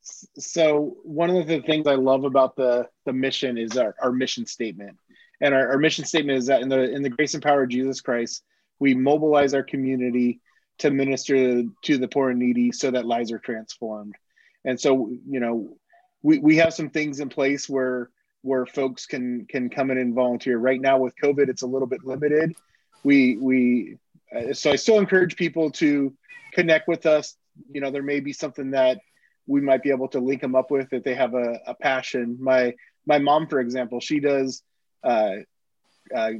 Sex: male